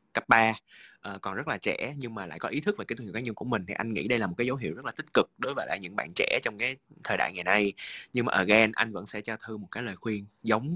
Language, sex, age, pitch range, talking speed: Vietnamese, male, 20-39, 95-140 Hz, 325 wpm